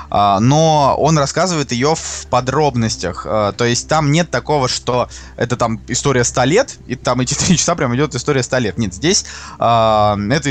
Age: 20-39